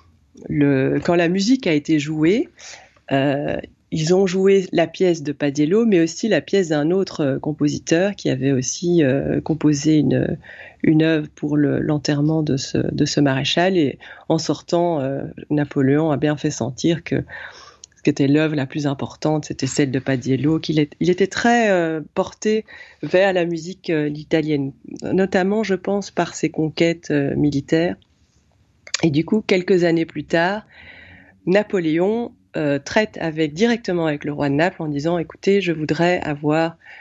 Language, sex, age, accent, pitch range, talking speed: French, female, 30-49, French, 150-180 Hz, 160 wpm